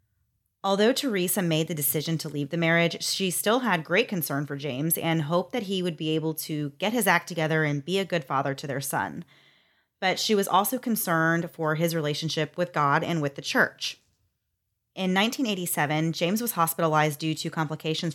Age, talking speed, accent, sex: 30-49, 190 wpm, American, female